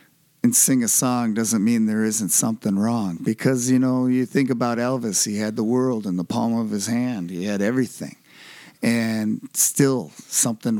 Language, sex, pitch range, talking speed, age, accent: English, male, 110-130 Hz, 180 wpm, 50-69, American